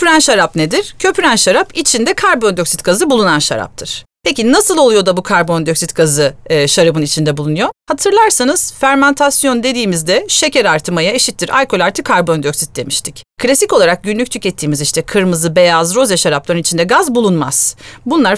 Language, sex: Turkish, female